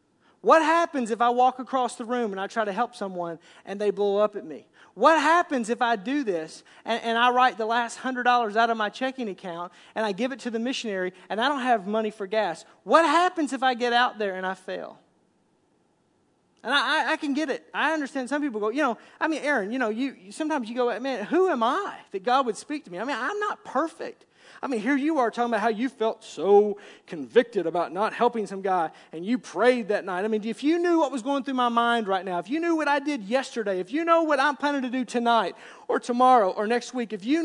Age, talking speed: 40-59, 255 wpm